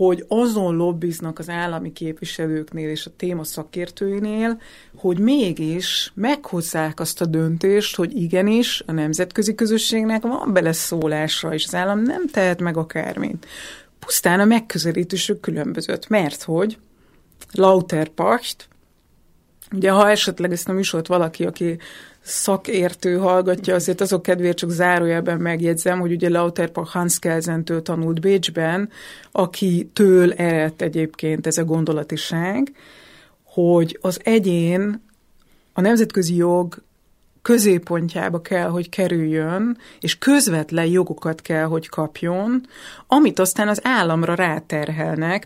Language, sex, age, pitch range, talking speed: English, female, 30-49, 165-195 Hz, 115 wpm